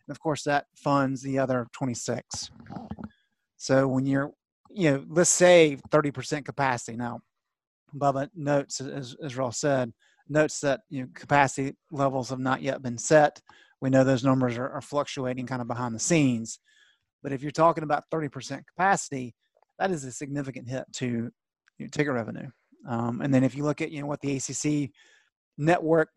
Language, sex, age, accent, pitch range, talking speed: English, male, 30-49, American, 130-160 Hz, 175 wpm